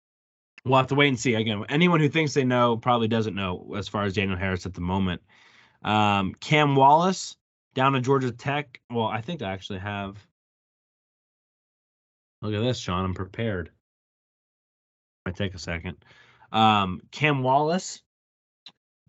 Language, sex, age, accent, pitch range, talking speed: English, male, 20-39, American, 95-130 Hz, 155 wpm